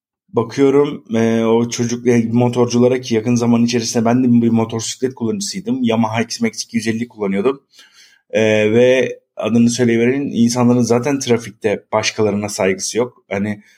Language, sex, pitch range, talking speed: Turkish, male, 115-145 Hz, 125 wpm